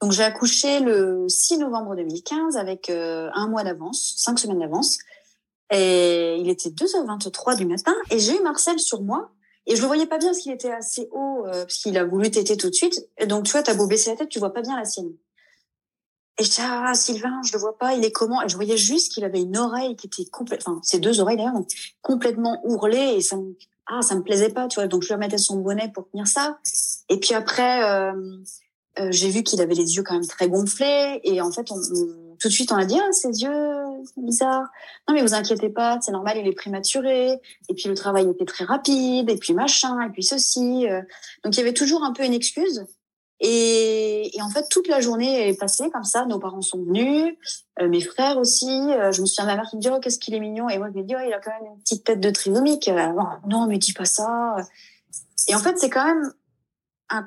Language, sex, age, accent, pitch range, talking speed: French, female, 30-49, French, 195-260 Hz, 250 wpm